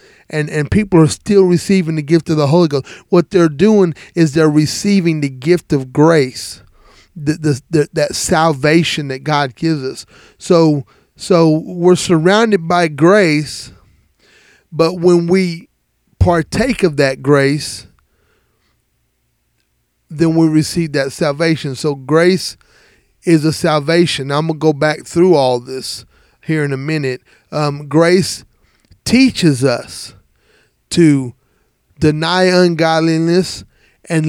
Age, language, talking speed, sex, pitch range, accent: 30-49, English, 130 wpm, male, 140-170 Hz, American